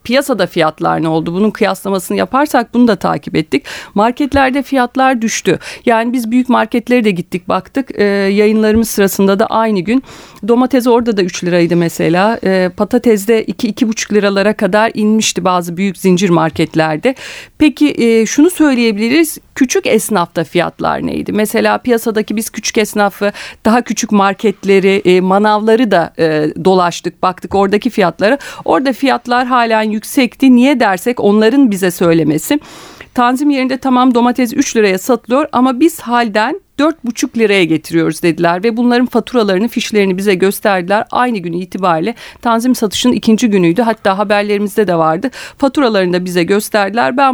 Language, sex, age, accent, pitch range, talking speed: Turkish, female, 40-59, native, 195-245 Hz, 145 wpm